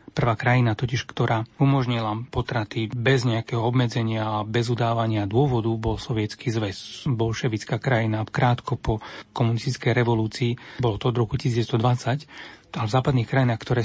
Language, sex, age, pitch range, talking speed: Slovak, male, 30-49, 115-140 Hz, 140 wpm